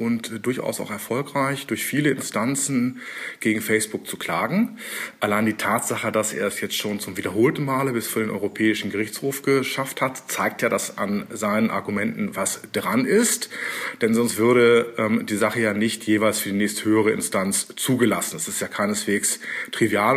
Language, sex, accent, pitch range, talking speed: German, male, German, 105-170 Hz, 170 wpm